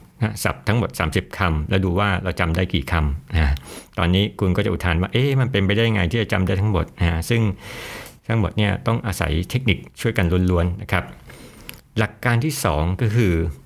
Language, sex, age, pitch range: Thai, male, 60-79, 85-105 Hz